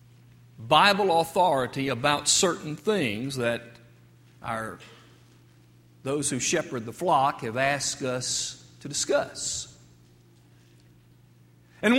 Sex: male